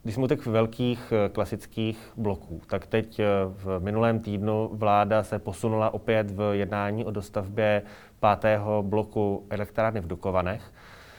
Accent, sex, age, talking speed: native, male, 20-39, 125 wpm